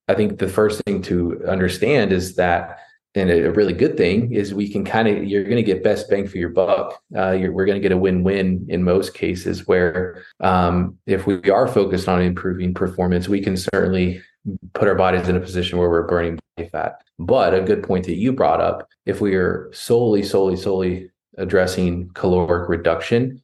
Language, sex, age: English, male, 20-39